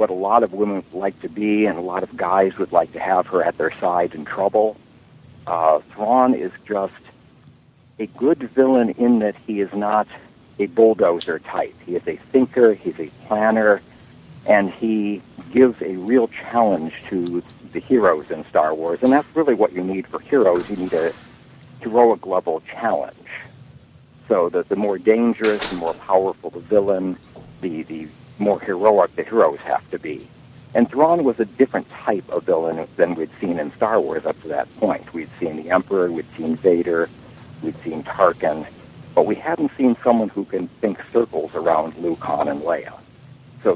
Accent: American